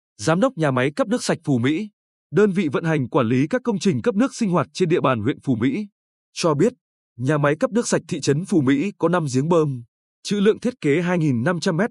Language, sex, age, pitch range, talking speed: Vietnamese, male, 20-39, 145-200 Hz, 240 wpm